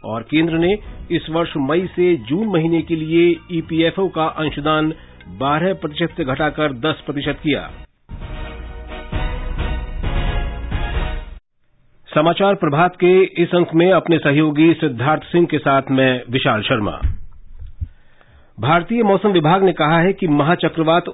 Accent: native